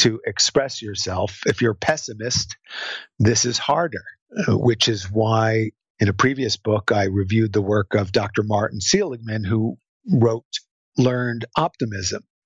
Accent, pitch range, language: American, 105-130 Hz, English